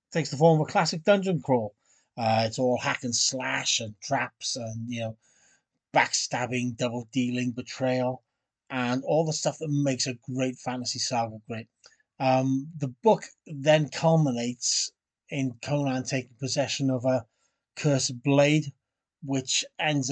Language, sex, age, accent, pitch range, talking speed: English, male, 30-49, British, 125-150 Hz, 145 wpm